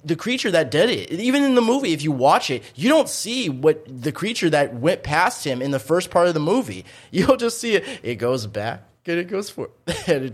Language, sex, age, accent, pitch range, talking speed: English, male, 20-39, American, 115-155 Hz, 250 wpm